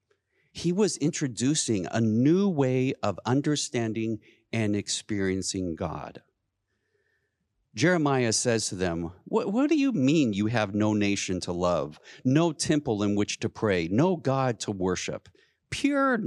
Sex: male